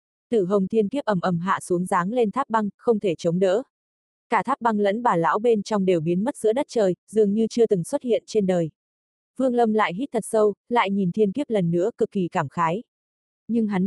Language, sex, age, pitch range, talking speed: Vietnamese, female, 20-39, 180-225 Hz, 240 wpm